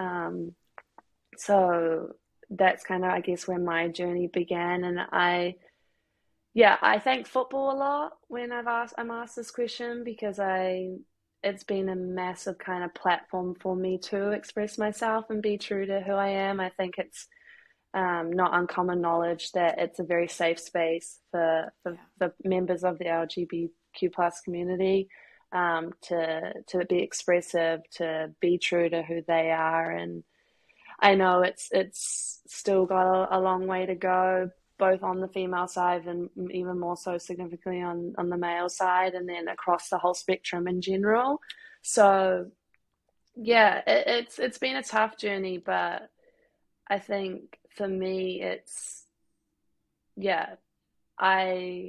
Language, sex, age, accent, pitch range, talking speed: English, female, 20-39, Australian, 175-200 Hz, 155 wpm